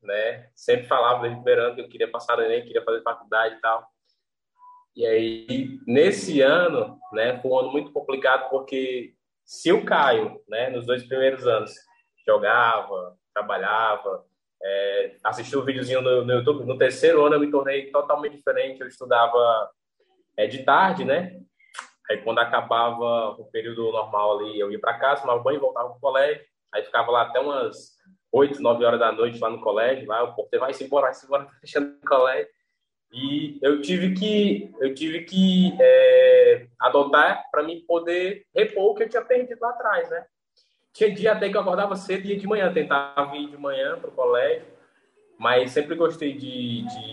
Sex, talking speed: male, 180 wpm